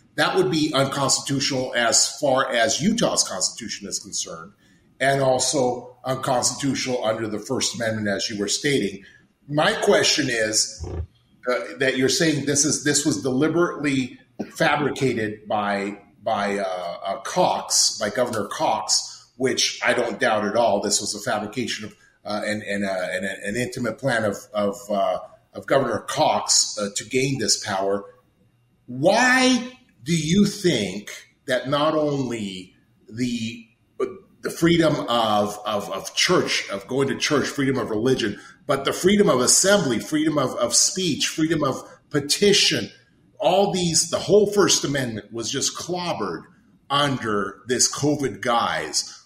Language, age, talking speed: English, 30-49, 145 wpm